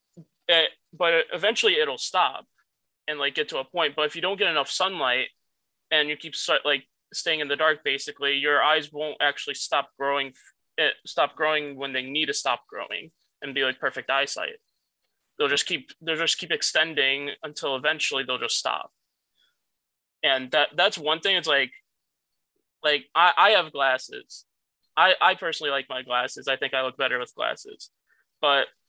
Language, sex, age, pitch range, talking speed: English, male, 20-39, 135-165 Hz, 180 wpm